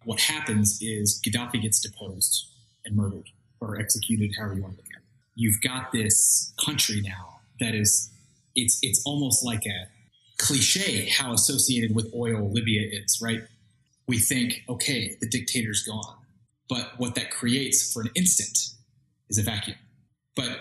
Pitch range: 110-130 Hz